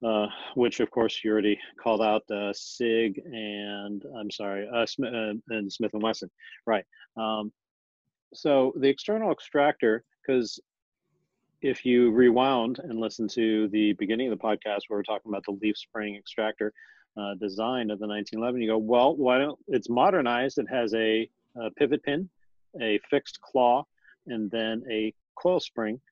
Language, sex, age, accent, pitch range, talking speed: English, male, 40-59, American, 105-125 Hz, 165 wpm